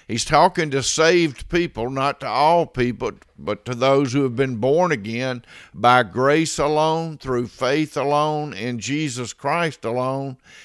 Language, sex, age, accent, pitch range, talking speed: English, male, 50-69, American, 125-155 Hz, 150 wpm